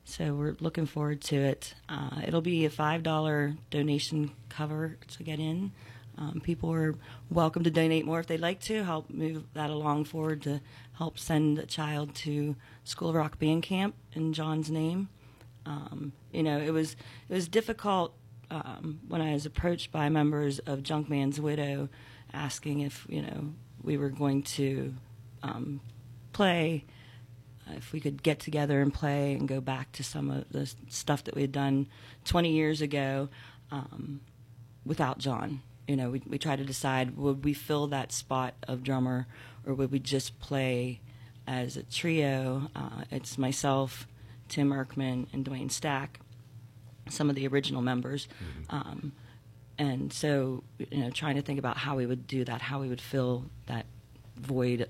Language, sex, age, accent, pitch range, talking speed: English, female, 40-59, American, 125-150 Hz, 165 wpm